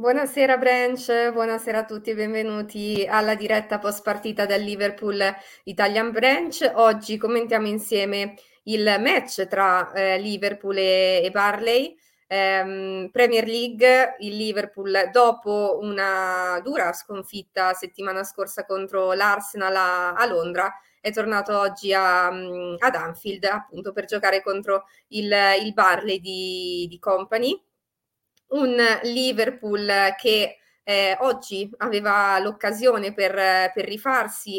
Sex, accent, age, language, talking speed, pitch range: female, native, 20-39, Italian, 115 wpm, 190-220 Hz